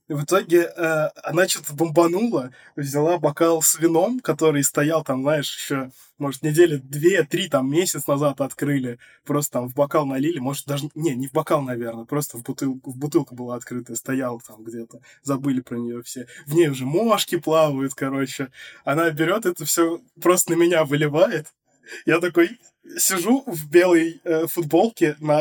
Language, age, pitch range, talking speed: Russian, 20-39, 145-180 Hz, 165 wpm